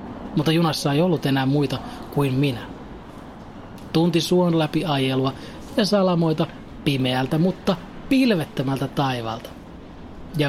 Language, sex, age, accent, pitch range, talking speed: Finnish, male, 30-49, native, 130-165 Hz, 110 wpm